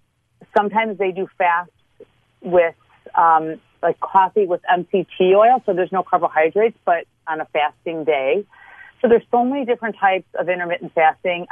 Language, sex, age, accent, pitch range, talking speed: English, female, 40-59, American, 160-195 Hz, 150 wpm